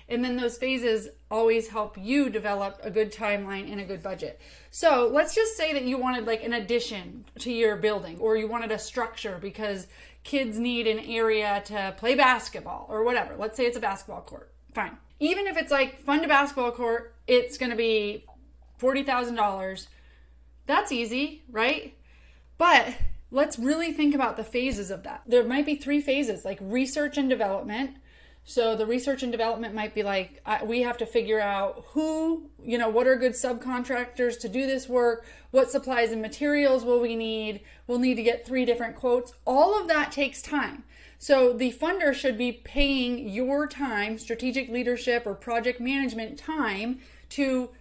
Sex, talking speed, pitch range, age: female, 175 wpm, 220-270 Hz, 30-49